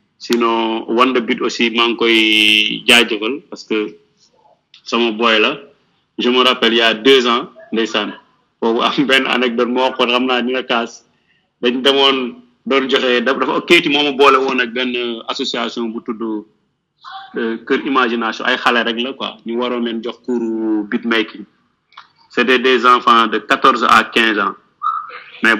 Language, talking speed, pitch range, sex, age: French, 60 wpm, 115-130 Hz, male, 30-49